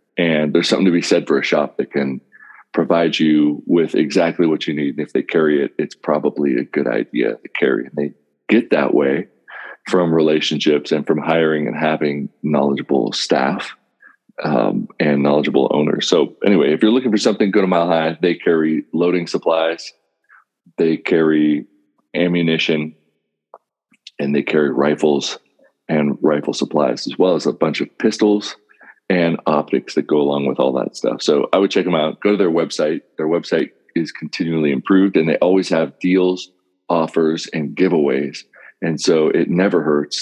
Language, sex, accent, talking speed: English, male, American, 175 wpm